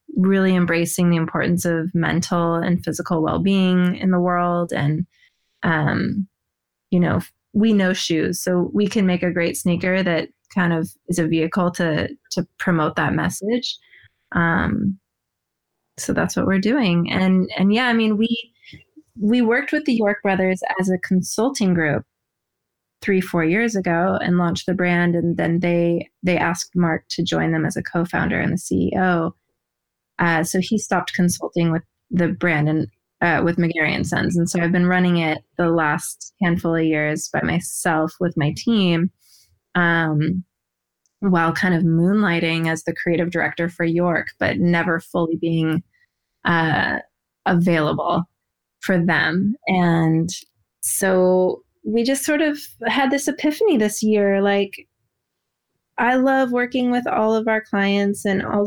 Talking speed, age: 155 wpm, 20-39